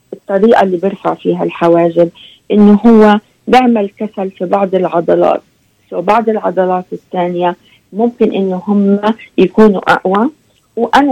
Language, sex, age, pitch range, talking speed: Arabic, female, 40-59, 175-220 Hz, 115 wpm